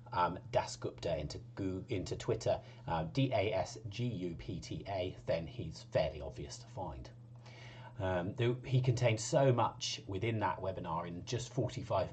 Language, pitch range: English, 110-130 Hz